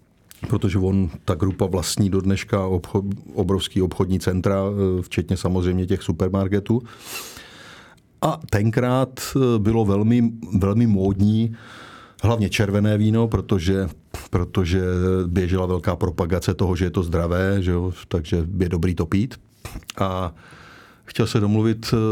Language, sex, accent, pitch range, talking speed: Czech, male, native, 95-110 Hz, 120 wpm